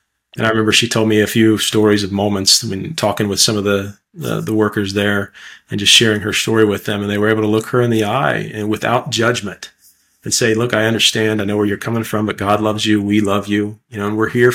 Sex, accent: male, American